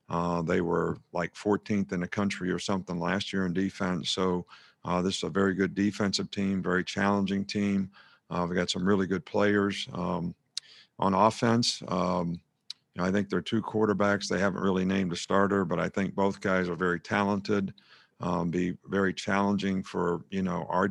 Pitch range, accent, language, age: 90-100 Hz, American, English, 50-69